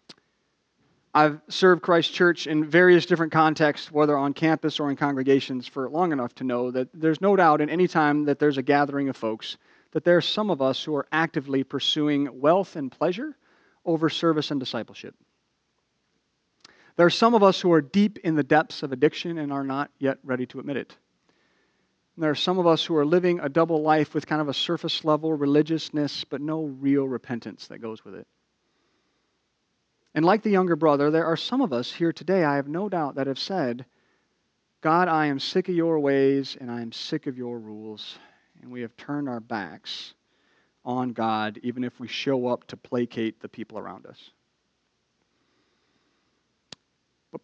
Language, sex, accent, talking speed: English, male, American, 190 wpm